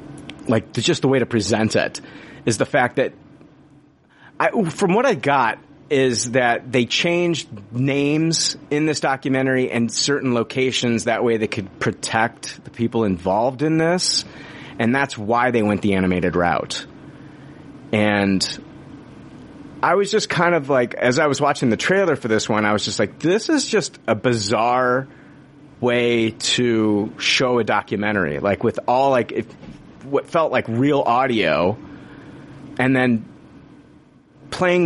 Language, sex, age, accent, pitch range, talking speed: English, male, 30-49, American, 110-145 Hz, 150 wpm